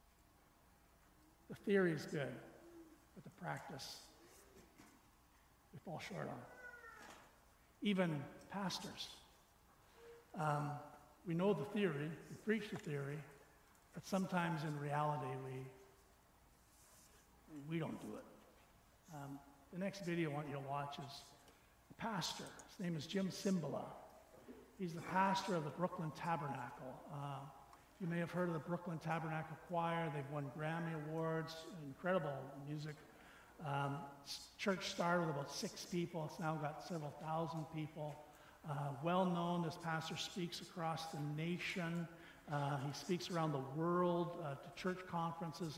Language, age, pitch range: English, 60-79, 145-175 Hz